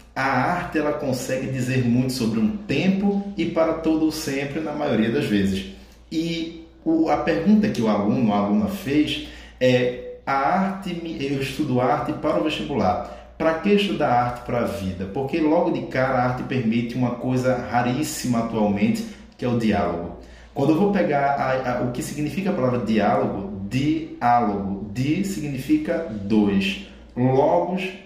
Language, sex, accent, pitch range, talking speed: Portuguese, male, Brazilian, 105-155 Hz, 160 wpm